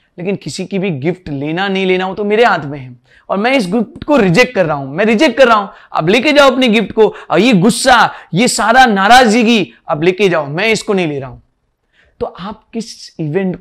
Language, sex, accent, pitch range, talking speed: Hindi, male, native, 170-230 Hz, 235 wpm